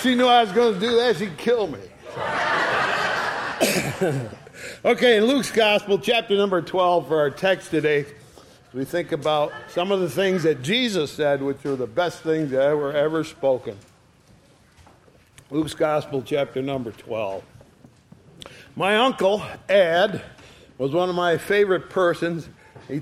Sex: male